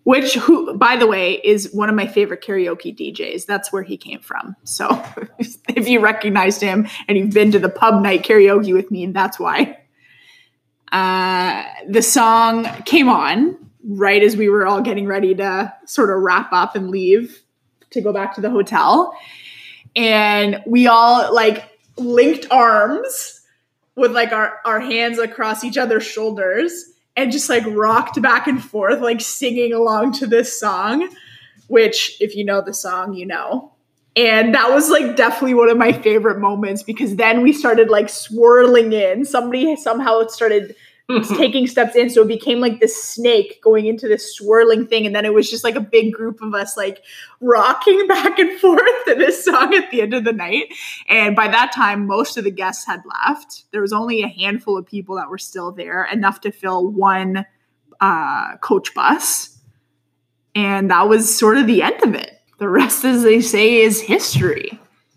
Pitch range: 200-245 Hz